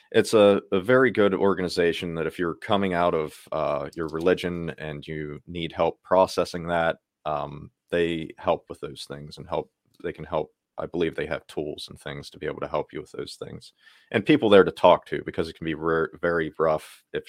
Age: 30-49